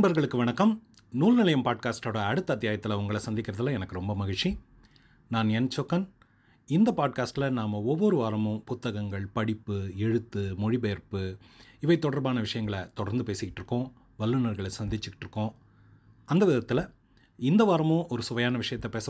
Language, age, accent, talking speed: Tamil, 30-49, native, 125 wpm